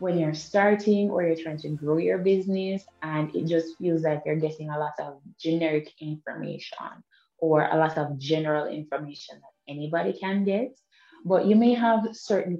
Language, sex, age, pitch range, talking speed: English, female, 20-39, 160-200 Hz, 175 wpm